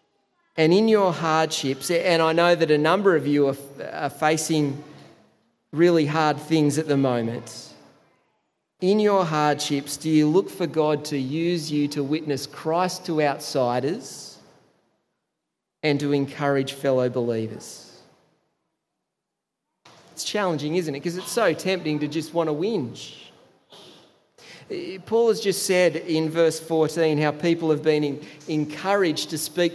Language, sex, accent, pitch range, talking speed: English, male, Australian, 150-180 Hz, 140 wpm